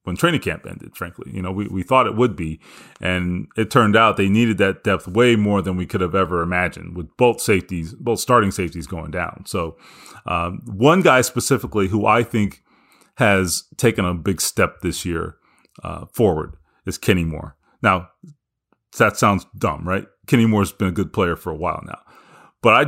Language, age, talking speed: English, 30-49, 195 wpm